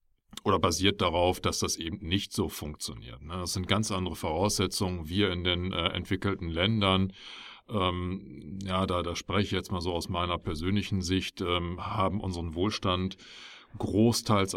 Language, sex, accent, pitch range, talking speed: German, male, German, 90-105 Hz, 155 wpm